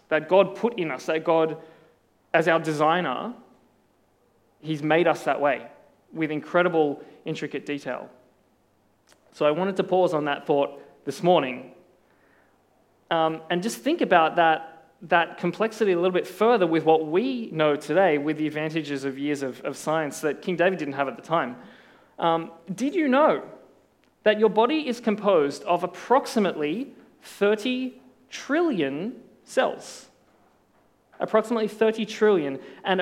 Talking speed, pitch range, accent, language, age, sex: 145 wpm, 155-210 Hz, Australian, English, 20-39, male